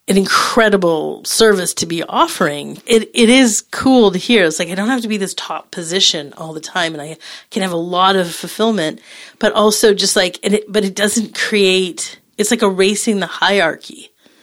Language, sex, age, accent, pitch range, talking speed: English, female, 40-59, American, 165-200 Hz, 200 wpm